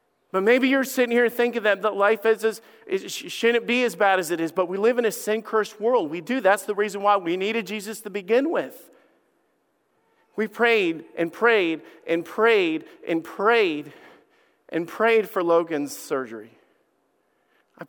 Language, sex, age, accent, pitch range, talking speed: English, male, 50-69, American, 160-215 Hz, 160 wpm